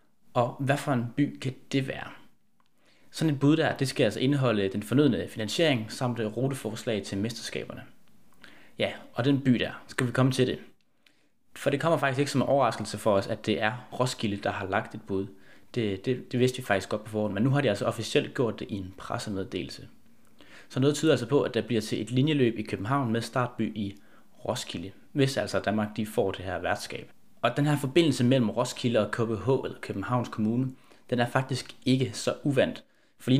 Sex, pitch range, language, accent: male, 105-130 Hz, Danish, native